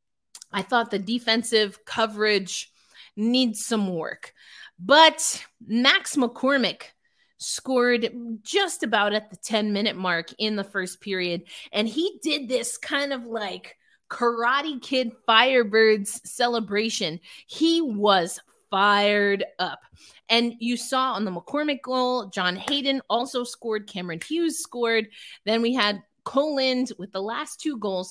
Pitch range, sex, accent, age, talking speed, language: 205-265 Hz, female, American, 30-49, 130 wpm, English